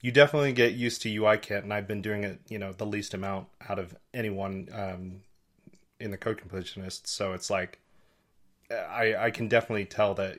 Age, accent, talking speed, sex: 30-49, American, 195 wpm, male